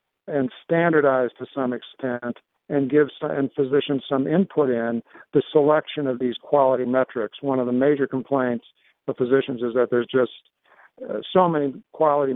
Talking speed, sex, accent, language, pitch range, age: 160 wpm, male, American, English, 125-150 Hz, 50-69